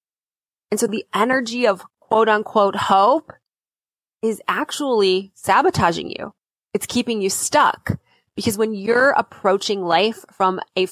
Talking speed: 125 wpm